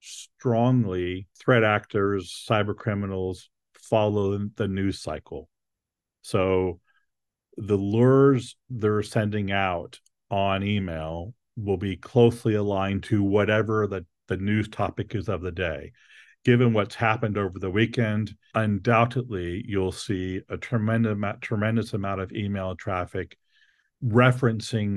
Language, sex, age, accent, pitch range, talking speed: English, male, 40-59, American, 95-120 Hz, 115 wpm